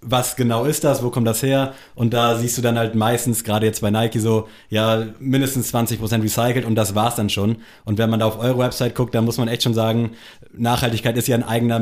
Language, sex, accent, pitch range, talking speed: German, male, German, 110-120 Hz, 245 wpm